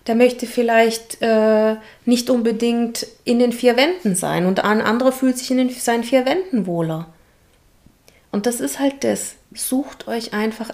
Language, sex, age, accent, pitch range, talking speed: German, female, 30-49, German, 185-230 Hz, 160 wpm